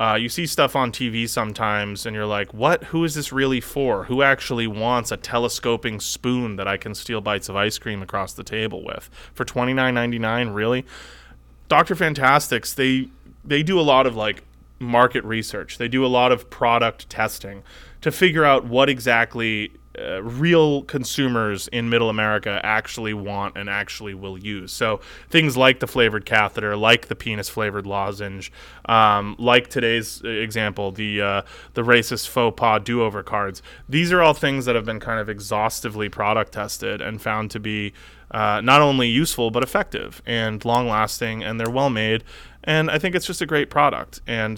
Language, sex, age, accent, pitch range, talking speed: English, male, 20-39, American, 105-125 Hz, 175 wpm